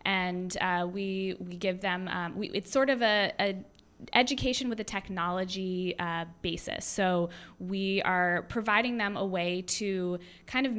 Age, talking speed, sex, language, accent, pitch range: 20-39, 160 wpm, female, English, American, 180-210 Hz